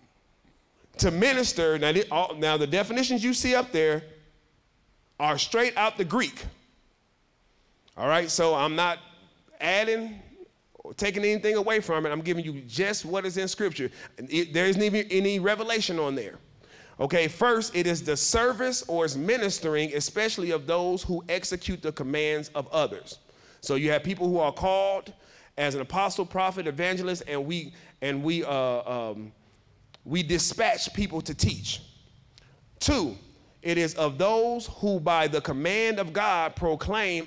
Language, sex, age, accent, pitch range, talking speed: English, male, 30-49, American, 150-200 Hz, 160 wpm